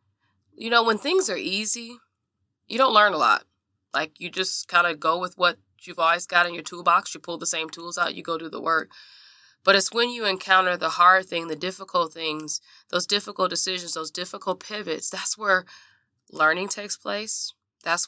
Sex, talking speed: female, 195 wpm